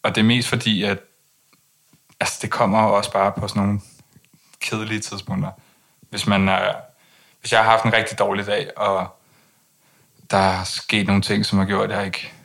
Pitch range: 95-110 Hz